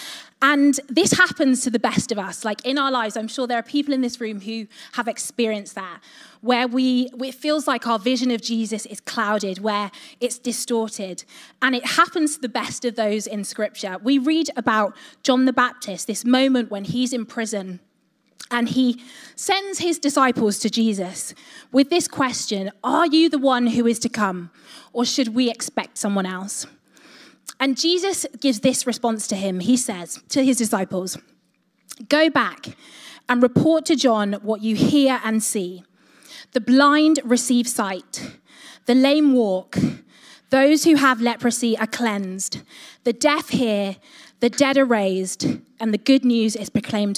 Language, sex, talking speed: English, female, 170 wpm